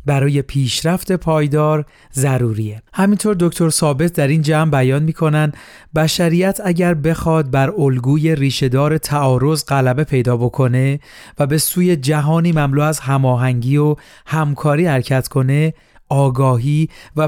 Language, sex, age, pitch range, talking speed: Persian, male, 40-59, 135-160 Hz, 120 wpm